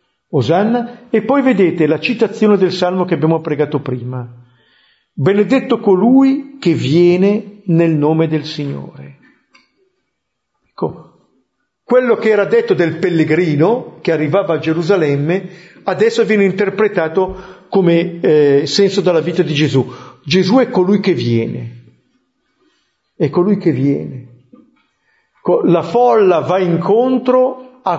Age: 50-69